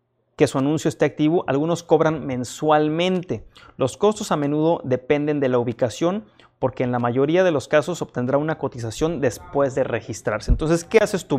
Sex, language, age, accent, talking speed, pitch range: male, Spanish, 30-49, Mexican, 175 wpm, 130-165 Hz